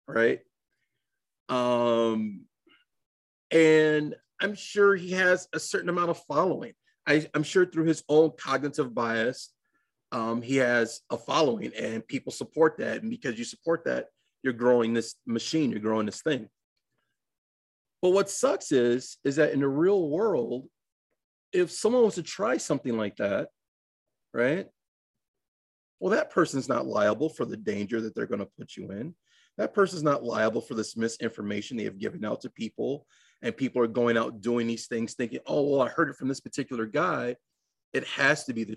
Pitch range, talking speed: 115-175 Hz, 170 wpm